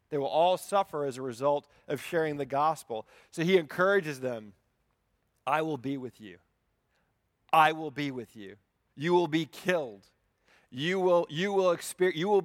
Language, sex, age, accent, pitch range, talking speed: English, male, 40-59, American, 125-180 Hz, 155 wpm